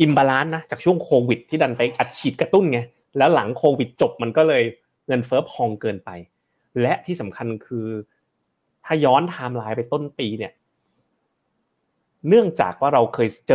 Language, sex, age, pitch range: Thai, male, 30-49, 110-135 Hz